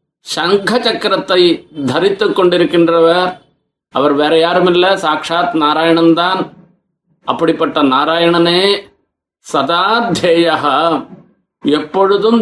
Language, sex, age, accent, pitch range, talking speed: Tamil, male, 50-69, native, 165-185 Hz, 70 wpm